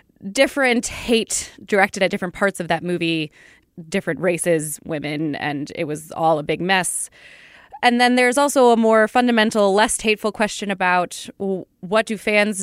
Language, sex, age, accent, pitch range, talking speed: English, female, 20-39, American, 170-215 Hz, 155 wpm